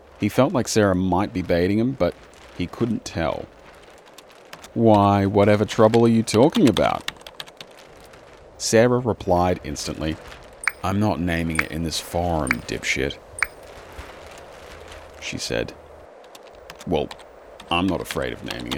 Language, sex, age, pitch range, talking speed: English, male, 30-49, 80-100 Hz, 120 wpm